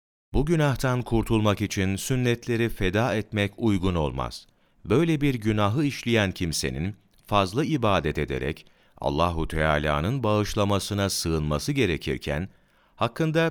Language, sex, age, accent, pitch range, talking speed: Turkish, male, 40-59, native, 85-115 Hz, 100 wpm